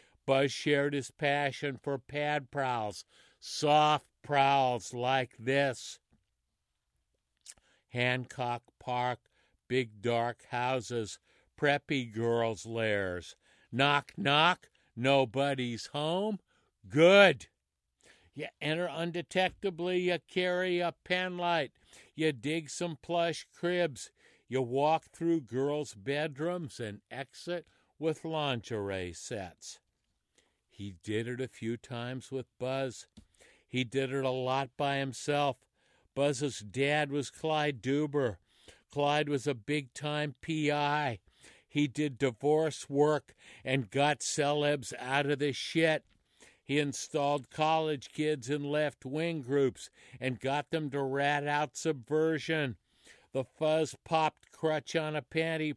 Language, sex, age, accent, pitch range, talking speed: English, male, 60-79, American, 125-150 Hz, 110 wpm